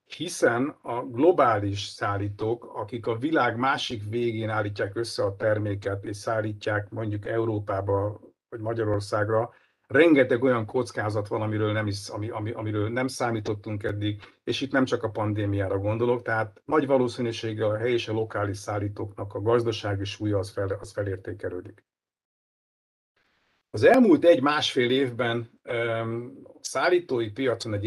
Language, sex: Hungarian, male